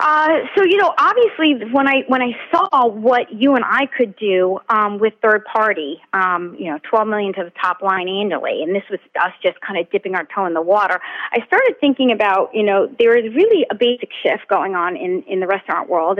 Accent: American